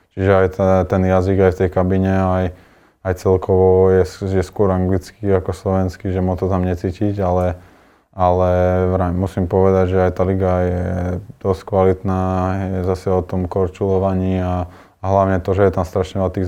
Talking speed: 175 wpm